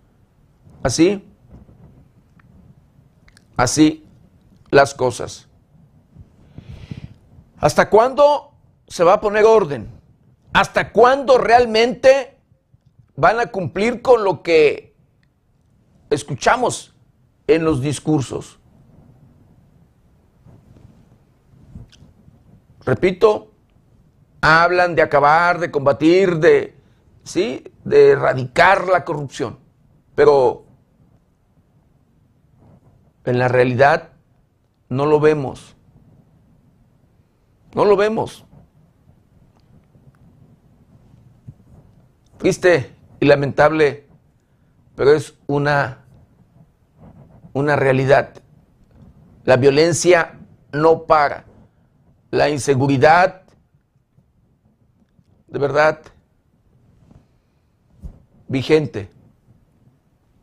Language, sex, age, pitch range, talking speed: Spanish, male, 50-69, 135-190 Hz, 60 wpm